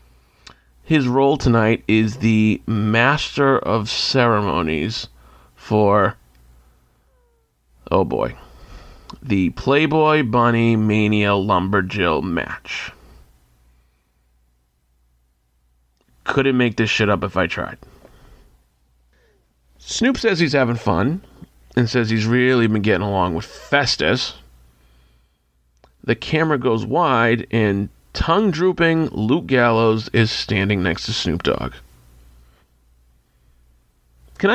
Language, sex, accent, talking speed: English, male, American, 90 wpm